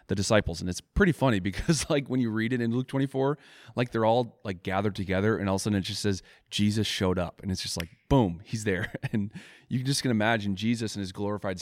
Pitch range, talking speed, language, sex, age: 95-120 Hz, 250 wpm, English, male, 30-49